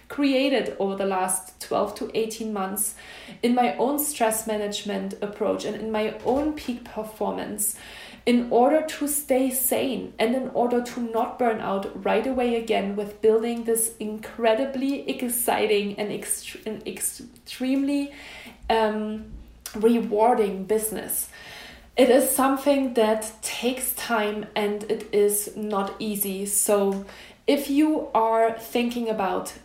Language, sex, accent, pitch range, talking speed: English, female, German, 210-255 Hz, 130 wpm